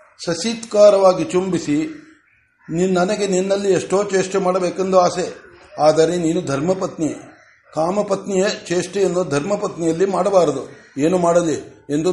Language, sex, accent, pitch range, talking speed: Kannada, male, native, 165-205 Hz, 90 wpm